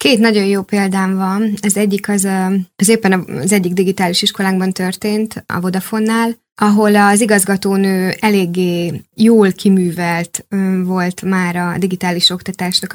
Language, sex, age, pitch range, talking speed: Hungarian, female, 20-39, 180-200 Hz, 130 wpm